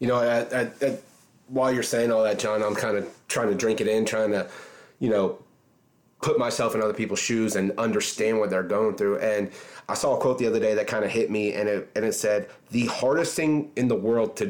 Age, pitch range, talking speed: 30-49, 110-135 Hz, 250 wpm